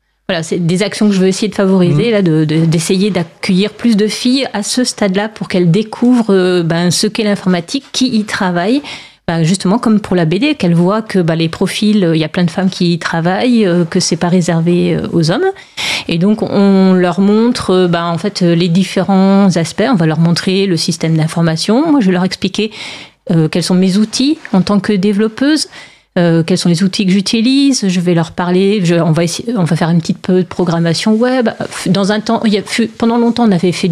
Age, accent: 40-59, French